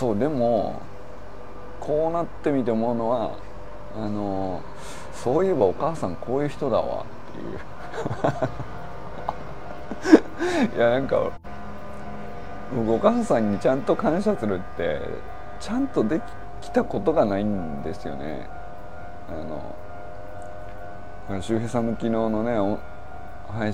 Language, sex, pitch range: Japanese, male, 100-115 Hz